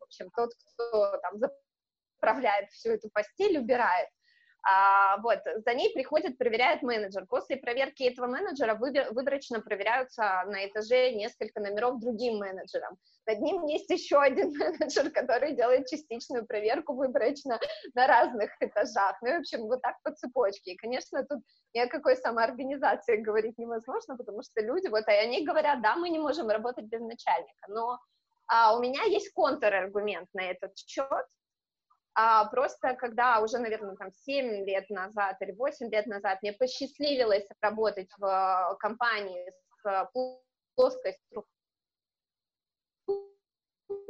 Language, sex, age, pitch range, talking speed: Russian, female, 20-39, 210-280 Hz, 145 wpm